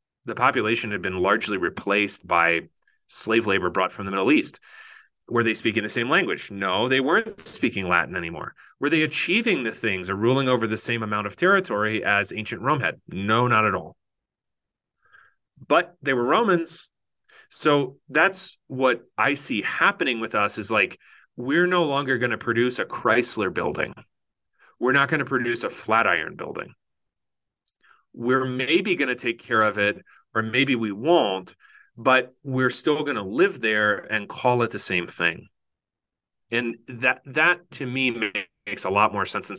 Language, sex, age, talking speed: English, male, 30-49, 175 wpm